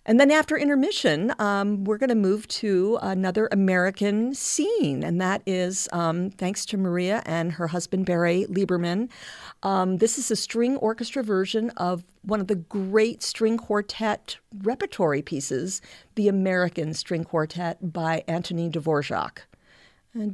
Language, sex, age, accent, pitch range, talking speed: English, female, 50-69, American, 170-215 Hz, 145 wpm